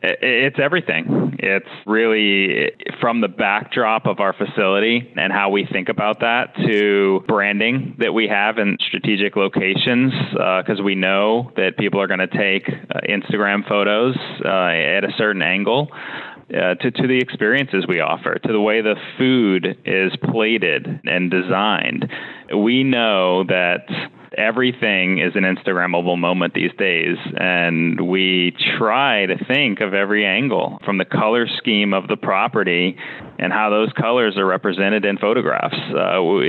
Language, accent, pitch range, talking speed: English, American, 90-110 Hz, 150 wpm